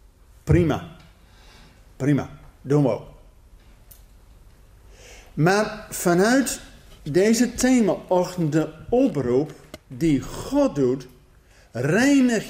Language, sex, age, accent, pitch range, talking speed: Dutch, male, 50-69, Dutch, 130-195 Hz, 70 wpm